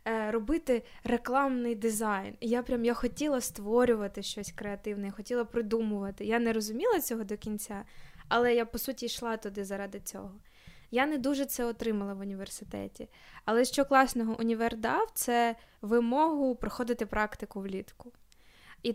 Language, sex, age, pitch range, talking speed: Ukrainian, female, 20-39, 205-240 Hz, 140 wpm